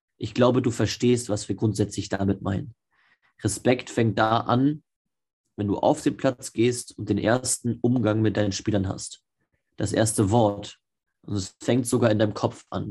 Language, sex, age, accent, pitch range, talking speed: German, male, 30-49, German, 105-125 Hz, 175 wpm